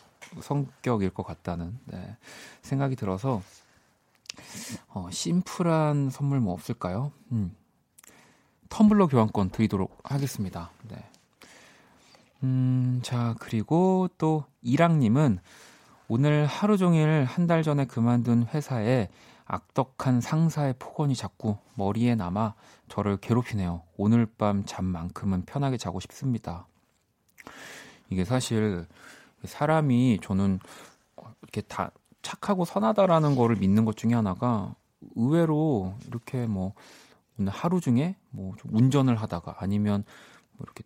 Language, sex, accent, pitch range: Korean, male, native, 100-145 Hz